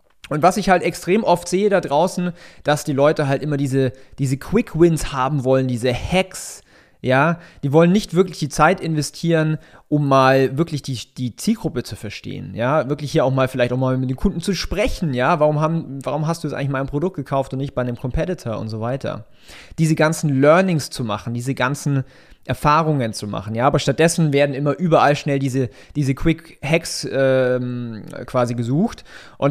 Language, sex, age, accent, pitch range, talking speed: German, male, 30-49, German, 130-160 Hz, 190 wpm